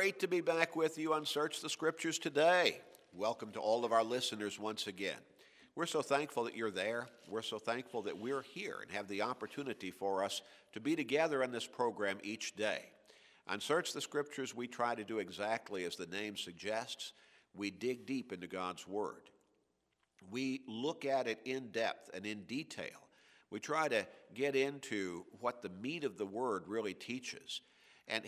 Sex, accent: male, American